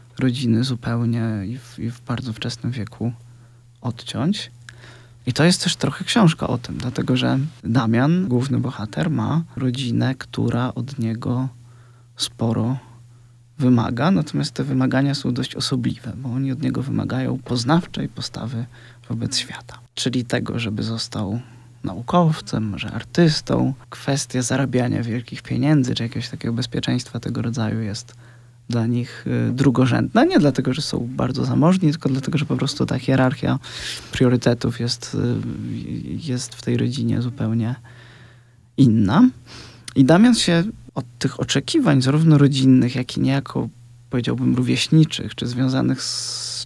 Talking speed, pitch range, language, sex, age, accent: 130 wpm, 120-135 Hz, Polish, male, 20-39, native